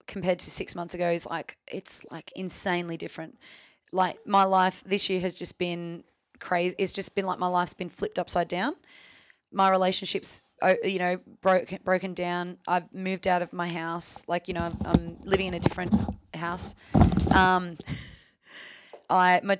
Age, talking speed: 20-39, 175 wpm